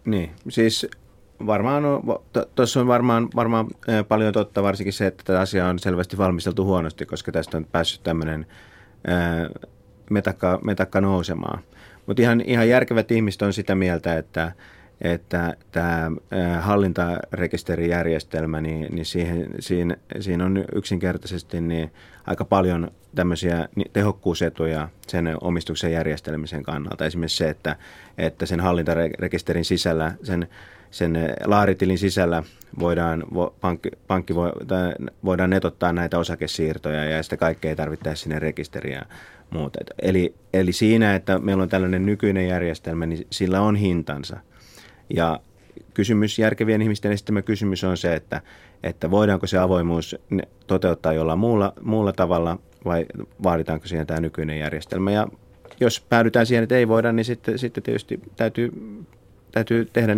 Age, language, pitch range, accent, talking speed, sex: 30-49, Finnish, 85-105 Hz, native, 130 wpm, male